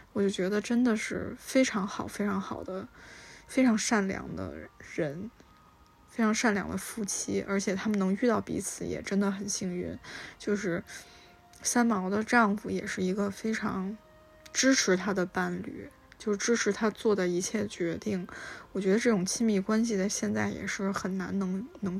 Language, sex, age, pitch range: Chinese, female, 20-39, 190-220 Hz